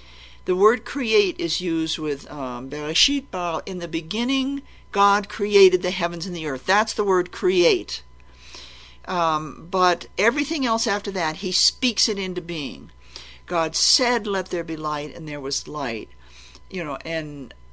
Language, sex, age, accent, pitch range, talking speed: English, male, 50-69, American, 150-210 Hz, 160 wpm